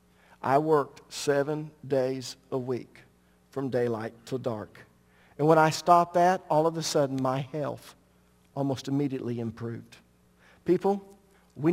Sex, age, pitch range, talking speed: male, 50-69, 130-160 Hz, 135 wpm